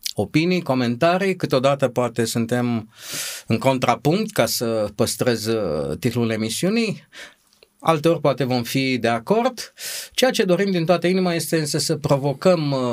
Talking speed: 125 wpm